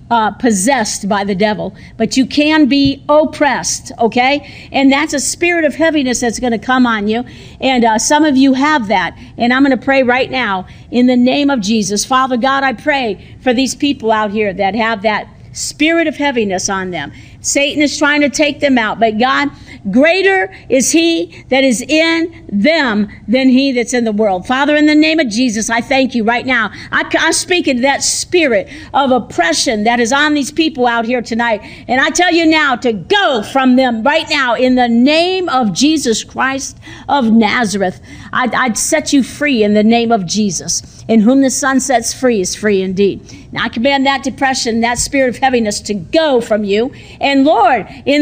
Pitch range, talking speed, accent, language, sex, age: 230-295 Hz, 200 wpm, American, English, female, 50-69